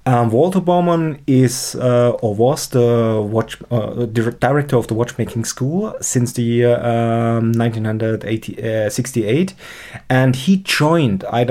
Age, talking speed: 30-49, 105 wpm